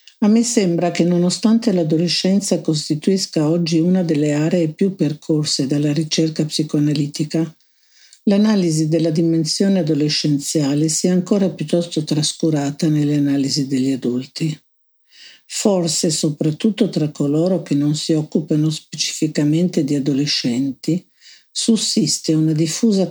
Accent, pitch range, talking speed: native, 150-185 Hz, 110 wpm